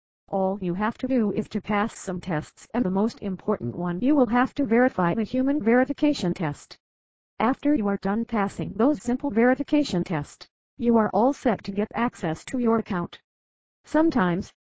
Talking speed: 180 wpm